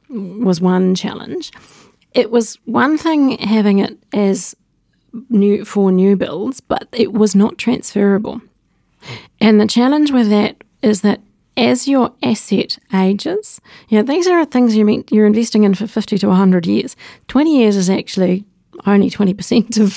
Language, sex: English, female